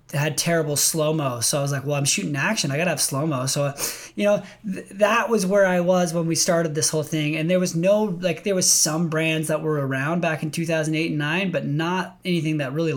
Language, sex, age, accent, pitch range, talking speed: English, male, 20-39, American, 145-175 Hz, 235 wpm